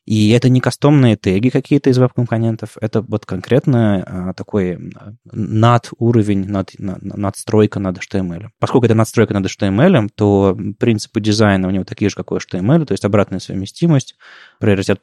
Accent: native